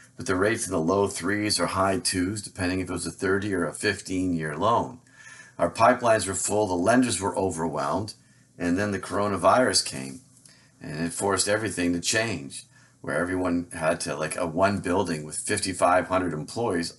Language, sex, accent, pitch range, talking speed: English, male, American, 85-105 Hz, 180 wpm